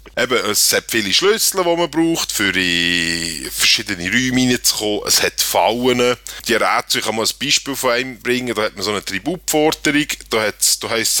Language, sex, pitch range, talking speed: German, male, 105-165 Hz, 195 wpm